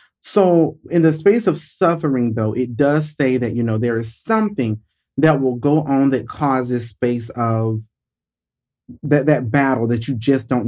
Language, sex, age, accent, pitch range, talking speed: English, male, 30-49, American, 125-180 Hz, 175 wpm